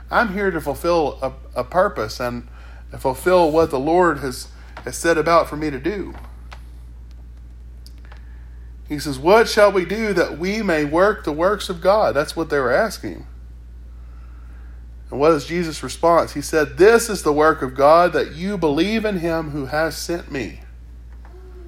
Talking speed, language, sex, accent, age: 170 wpm, English, male, American, 40-59